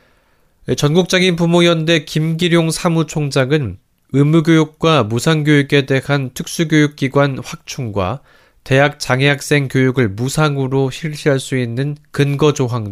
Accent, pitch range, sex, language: native, 125-155 Hz, male, Korean